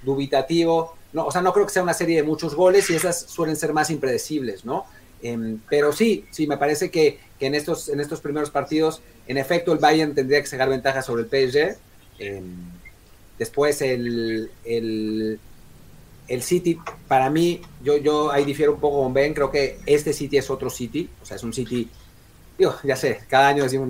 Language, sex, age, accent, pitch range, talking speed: Spanish, male, 30-49, Mexican, 125-165 Hz, 200 wpm